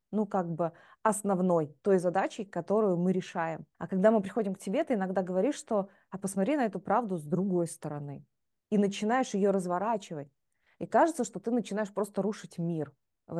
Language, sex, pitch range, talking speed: Russian, female, 175-225 Hz, 180 wpm